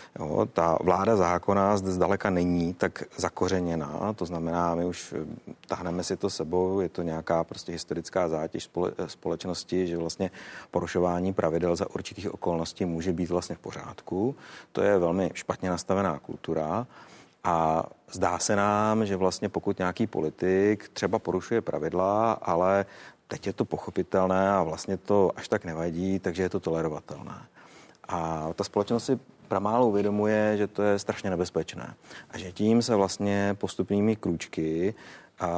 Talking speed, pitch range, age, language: 145 wpm, 85-100 Hz, 30-49, Czech